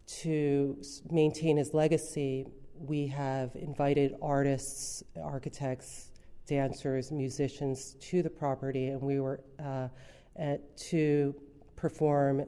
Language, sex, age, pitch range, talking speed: English, female, 40-59, 130-150 Hz, 95 wpm